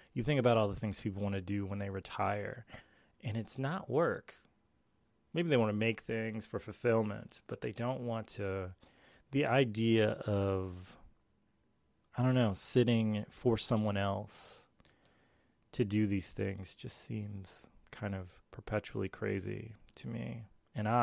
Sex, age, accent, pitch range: male, 20-39, American, 100-115 Hz